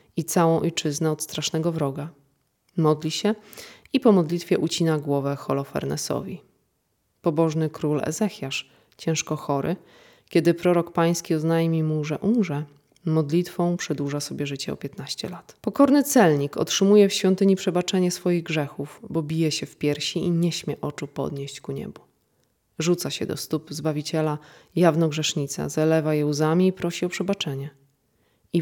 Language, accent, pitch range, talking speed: Polish, native, 150-190 Hz, 145 wpm